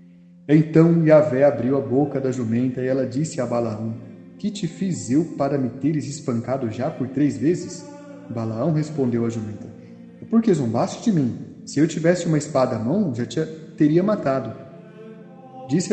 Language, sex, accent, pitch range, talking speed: Portuguese, male, Brazilian, 125-160 Hz, 165 wpm